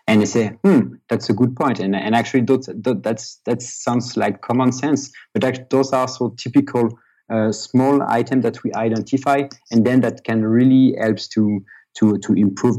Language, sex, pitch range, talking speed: English, male, 100-120 Hz, 190 wpm